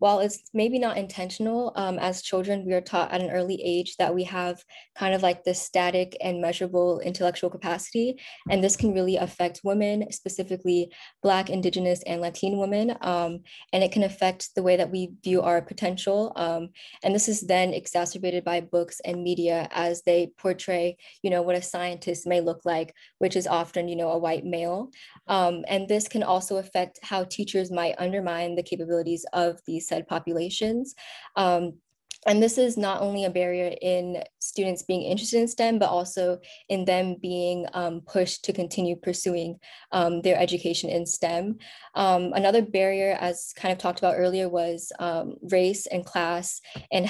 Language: English